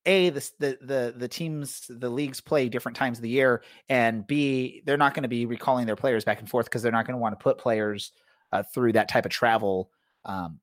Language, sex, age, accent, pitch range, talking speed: English, male, 30-49, American, 115-150 Hz, 235 wpm